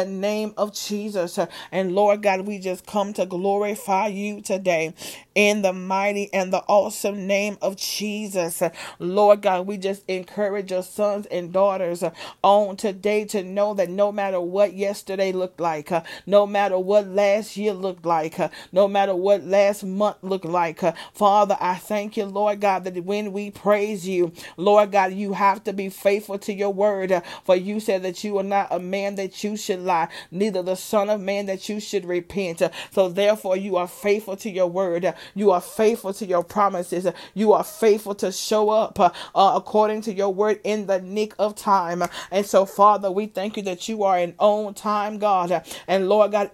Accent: American